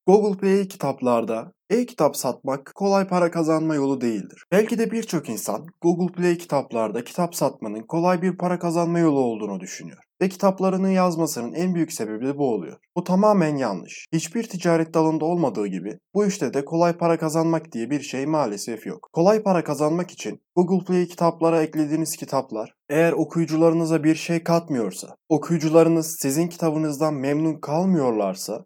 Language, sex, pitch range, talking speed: Turkish, male, 140-175 Hz, 155 wpm